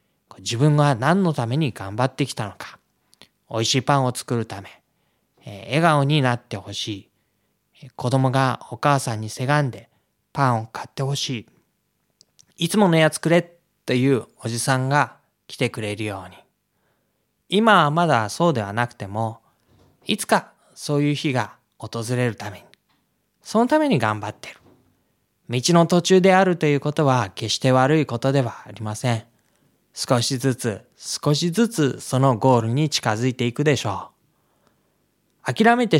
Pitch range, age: 115-155 Hz, 20-39